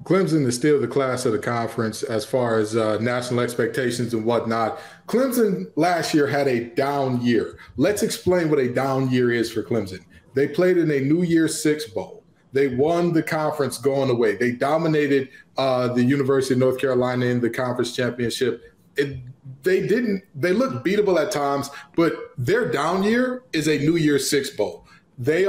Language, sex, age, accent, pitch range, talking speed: English, male, 20-39, American, 130-165 Hz, 180 wpm